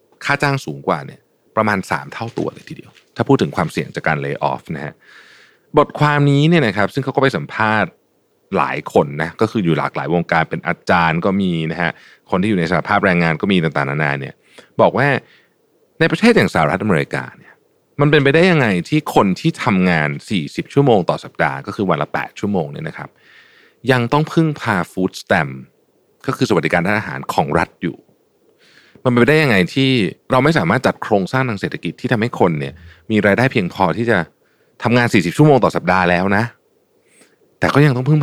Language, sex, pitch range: Thai, male, 90-145 Hz